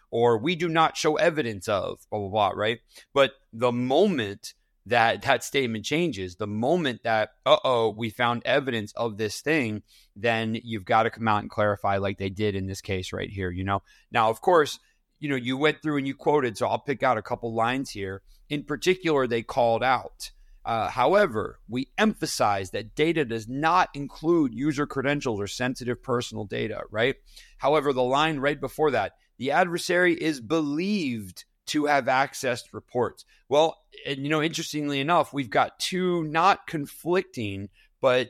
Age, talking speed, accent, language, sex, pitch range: 30-49, 175 wpm, American, English, male, 105-145 Hz